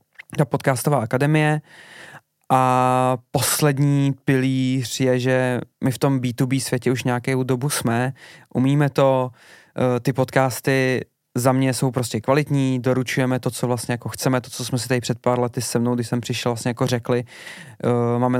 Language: Czech